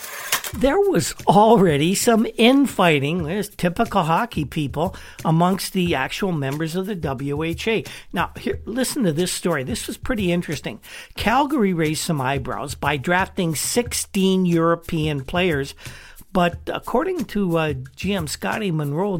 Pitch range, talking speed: 150-190 Hz, 130 wpm